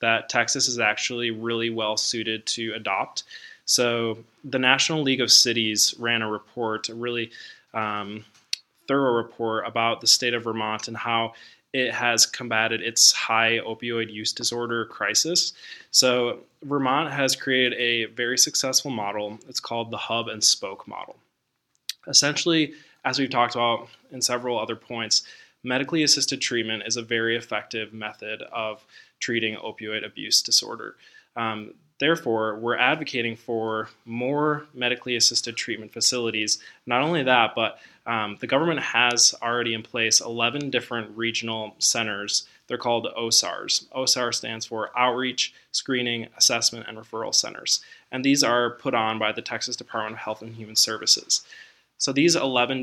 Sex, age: male, 20-39